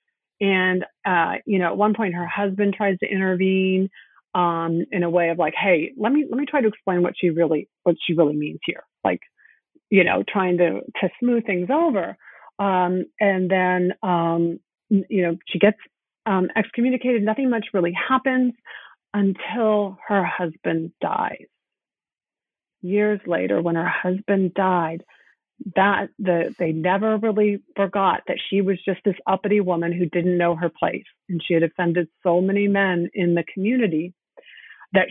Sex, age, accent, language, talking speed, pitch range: female, 40-59, American, English, 160 wpm, 170-205 Hz